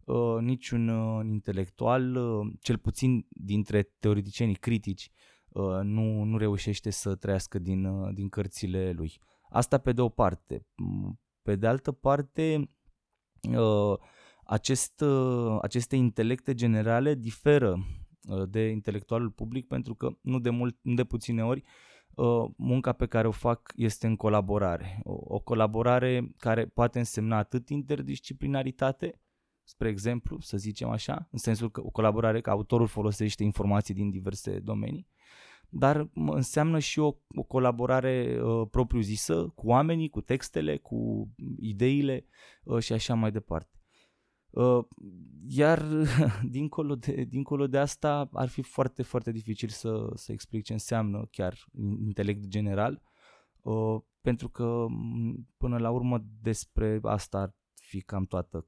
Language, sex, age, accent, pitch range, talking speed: Romanian, male, 20-39, native, 105-125 Hz, 135 wpm